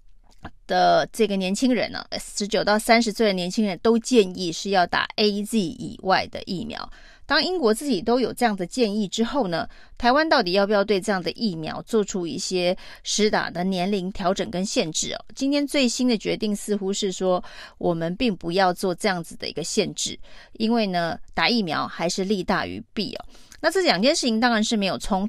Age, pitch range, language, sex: 30-49, 185-230 Hz, Chinese, female